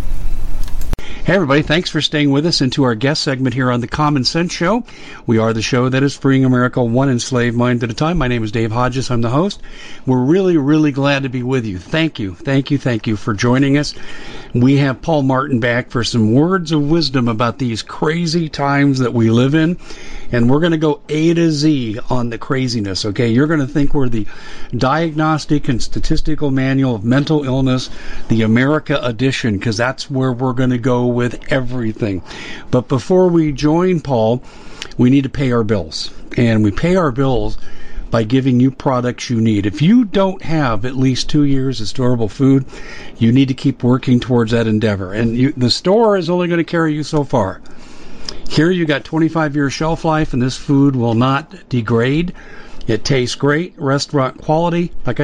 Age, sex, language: 50-69, male, English